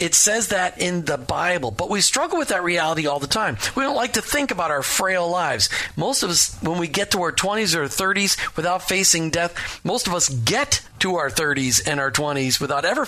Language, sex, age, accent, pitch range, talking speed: English, male, 40-59, American, 145-195 Hz, 230 wpm